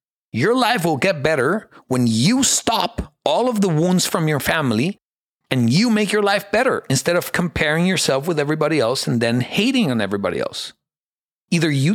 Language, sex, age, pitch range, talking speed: English, male, 40-59, 135-200 Hz, 180 wpm